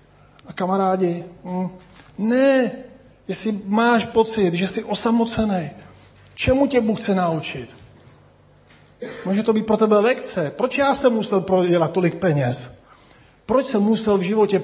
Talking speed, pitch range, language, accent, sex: 135 wpm, 145-195 Hz, Czech, native, male